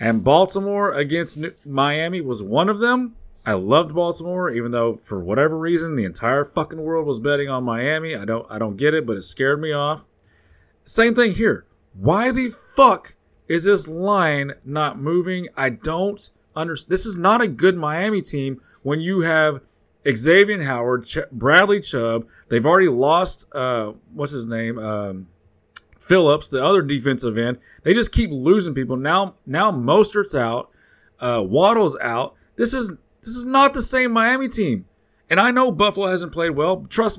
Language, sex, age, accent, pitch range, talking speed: English, male, 30-49, American, 135-195 Hz, 175 wpm